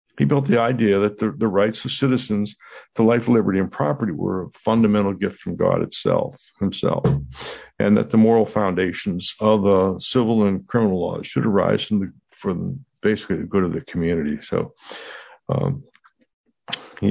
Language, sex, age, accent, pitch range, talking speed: English, male, 60-79, American, 95-110 Hz, 170 wpm